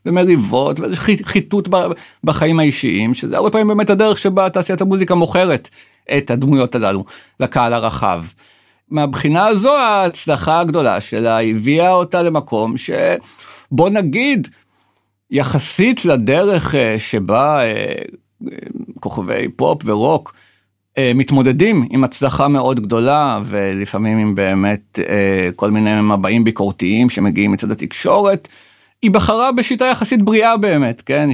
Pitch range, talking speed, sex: 115-185 Hz, 105 wpm, male